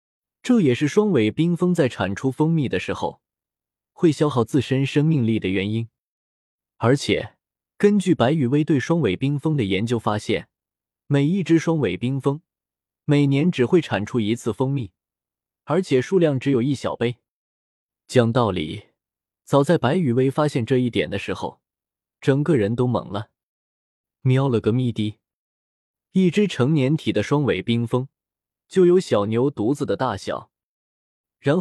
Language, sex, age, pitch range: Chinese, male, 20-39, 105-155 Hz